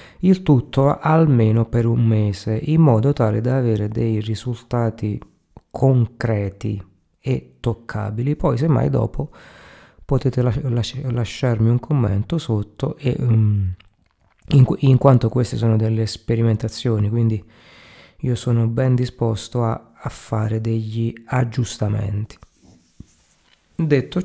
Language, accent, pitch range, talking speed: Italian, native, 110-135 Hz, 115 wpm